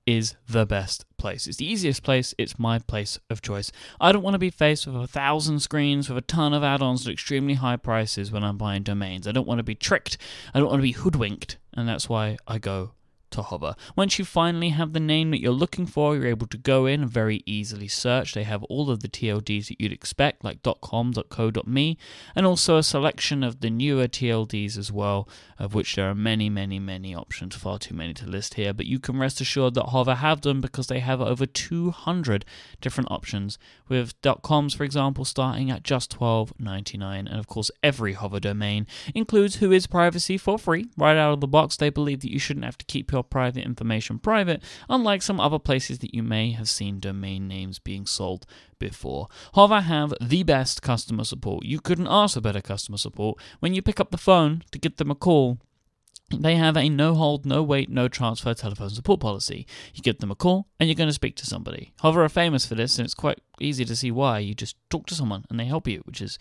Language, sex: English, male